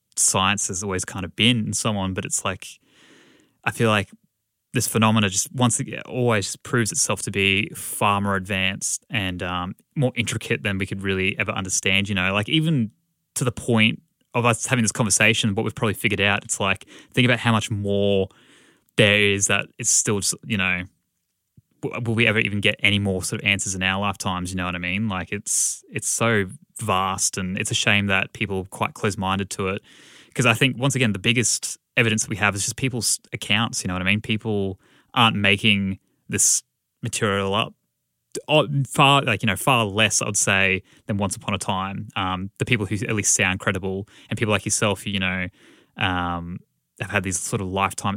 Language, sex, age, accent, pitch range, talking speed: English, male, 20-39, Australian, 95-115 Hz, 205 wpm